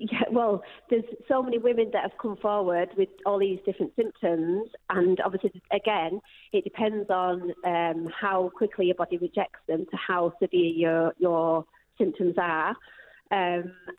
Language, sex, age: English, female, 30-49